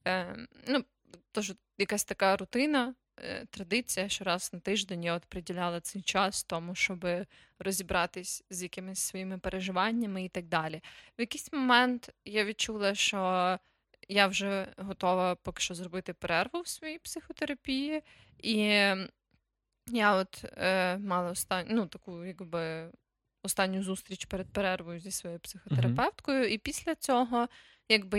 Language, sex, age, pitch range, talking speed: Ukrainian, female, 20-39, 185-220 Hz, 130 wpm